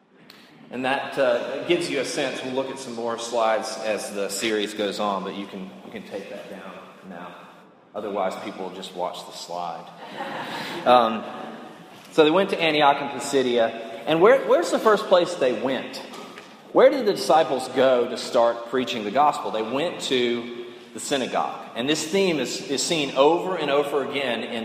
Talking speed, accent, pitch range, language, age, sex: 185 wpm, American, 115-155 Hz, English, 30-49, male